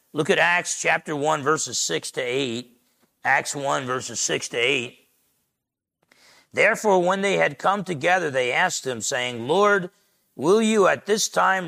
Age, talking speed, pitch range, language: 50-69, 160 wpm, 145-200 Hz, English